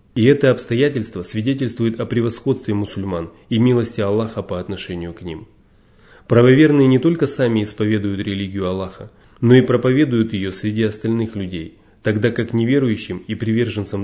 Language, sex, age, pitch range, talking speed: Russian, male, 30-49, 100-120 Hz, 140 wpm